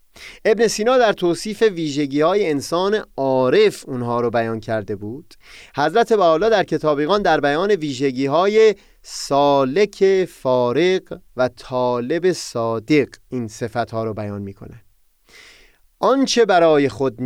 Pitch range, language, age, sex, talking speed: 120-165 Hz, Persian, 30-49, male, 120 wpm